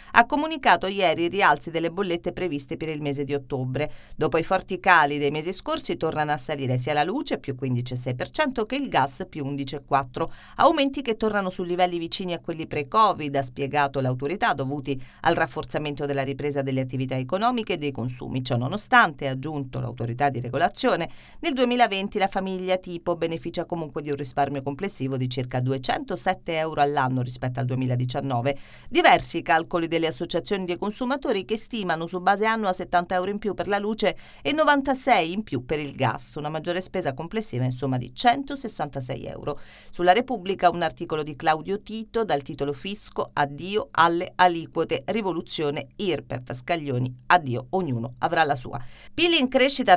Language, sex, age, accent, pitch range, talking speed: Italian, female, 40-59, native, 140-195 Hz, 165 wpm